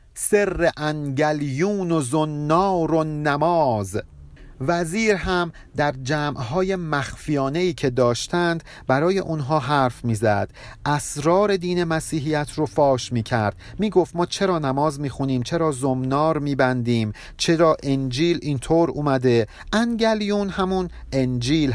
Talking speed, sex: 115 wpm, male